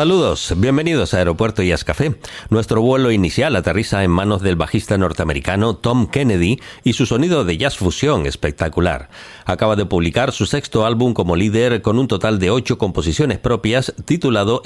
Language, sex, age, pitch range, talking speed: Spanish, male, 40-59, 90-120 Hz, 165 wpm